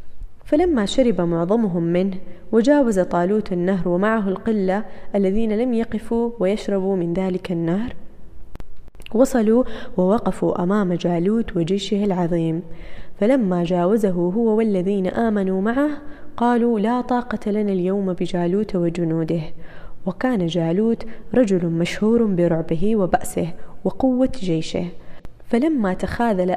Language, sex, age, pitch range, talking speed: Arabic, female, 20-39, 175-225 Hz, 100 wpm